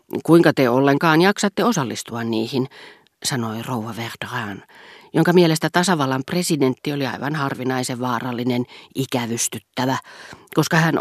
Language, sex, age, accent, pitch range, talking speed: Finnish, female, 40-59, native, 125-165 Hz, 110 wpm